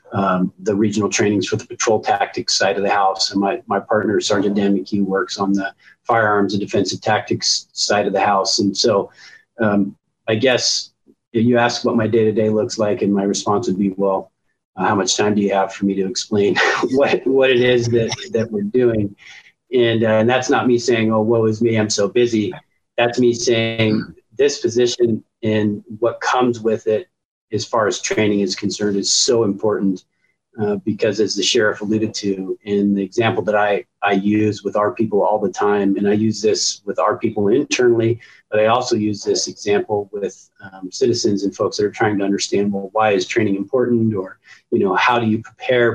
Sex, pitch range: male, 100-120 Hz